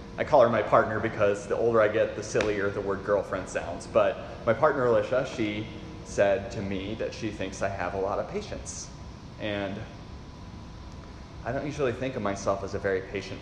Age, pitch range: 30-49, 100-120 Hz